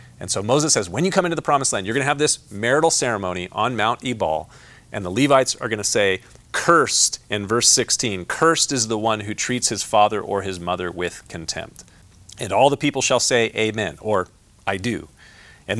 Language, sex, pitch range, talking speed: English, male, 110-135 Hz, 215 wpm